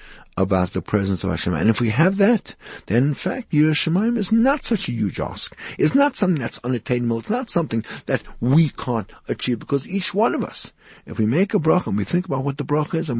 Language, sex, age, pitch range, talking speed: English, male, 60-79, 110-170 Hz, 230 wpm